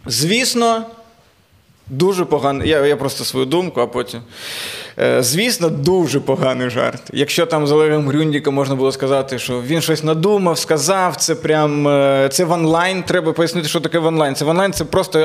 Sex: male